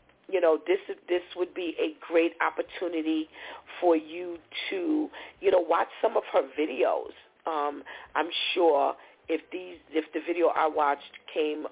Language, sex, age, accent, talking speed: English, female, 40-59, American, 160 wpm